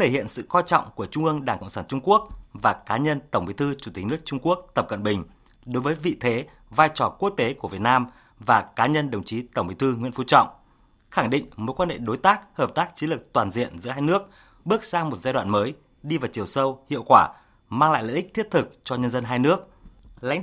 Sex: male